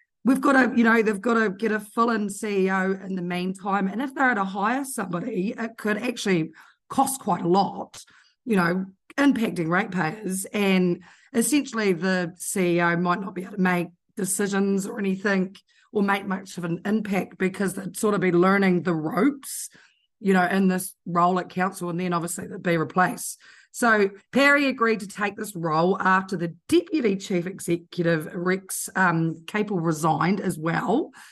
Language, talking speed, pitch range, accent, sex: English, 175 wpm, 185-235 Hz, Australian, female